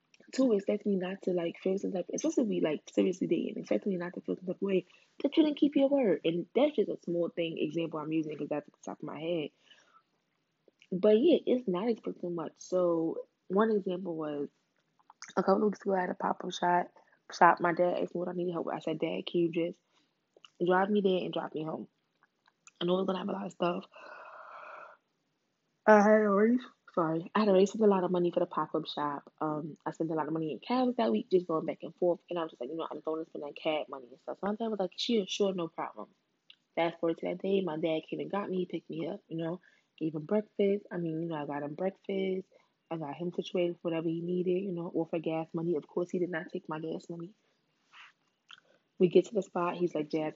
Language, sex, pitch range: English, female, 165-195 Hz